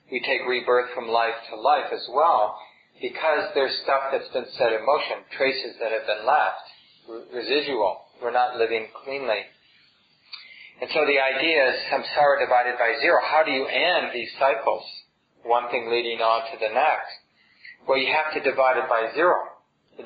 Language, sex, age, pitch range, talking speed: English, male, 40-59, 125-185 Hz, 175 wpm